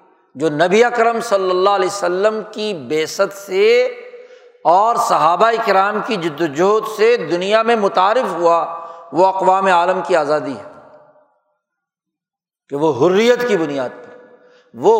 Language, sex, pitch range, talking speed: Urdu, male, 175-245 Hz, 130 wpm